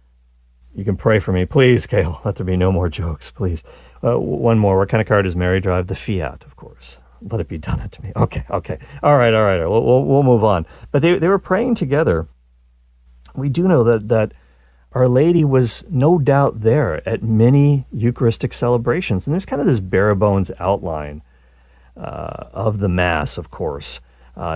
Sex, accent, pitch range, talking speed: male, American, 80-120 Hz, 200 wpm